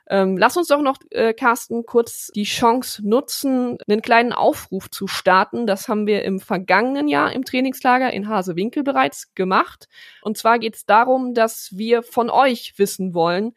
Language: German